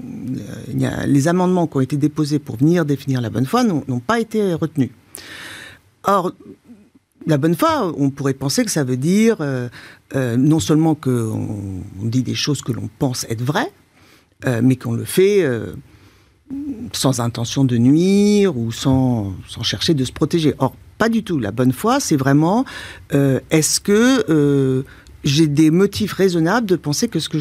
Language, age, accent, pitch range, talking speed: French, 50-69, French, 130-195 Hz, 180 wpm